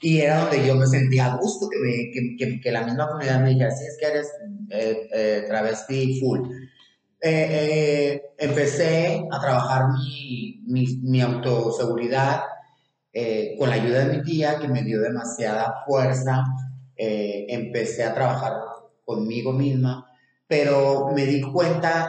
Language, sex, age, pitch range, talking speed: Spanish, male, 30-49, 125-145 Hz, 155 wpm